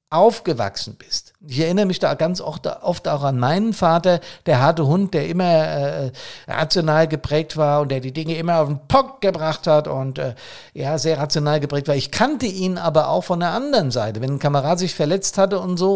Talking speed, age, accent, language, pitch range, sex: 210 wpm, 50-69, German, German, 135-180 Hz, male